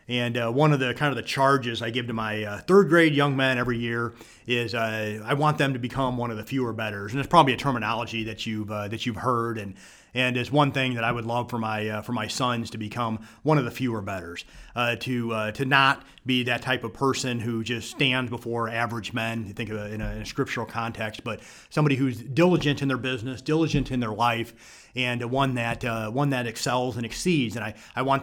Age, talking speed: 30-49, 240 wpm